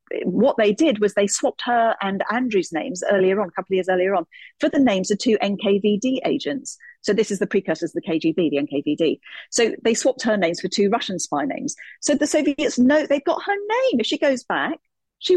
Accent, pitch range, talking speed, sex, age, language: British, 185-255 Hz, 225 wpm, female, 40-59, English